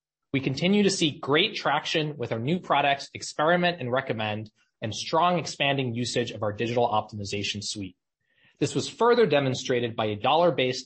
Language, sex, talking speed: English, male, 160 wpm